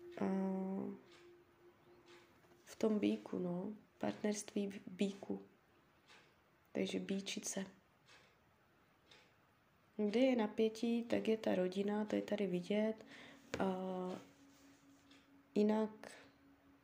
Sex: female